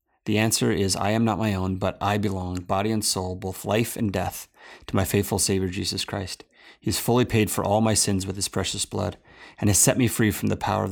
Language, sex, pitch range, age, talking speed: English, male, 95-120 Hz, 30-49, 245 wpm